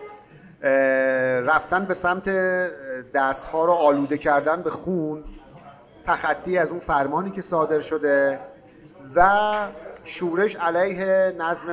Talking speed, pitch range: 100 wpm, 150-190 Hz